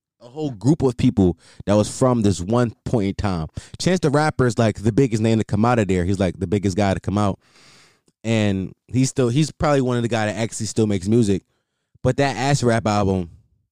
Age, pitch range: 20-39, 105-140 Hz